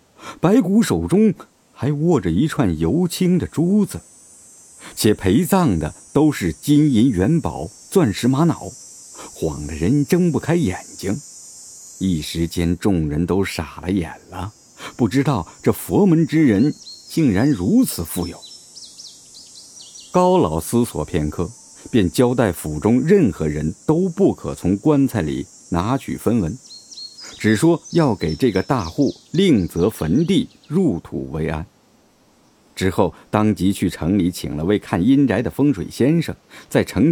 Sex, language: male, Chinese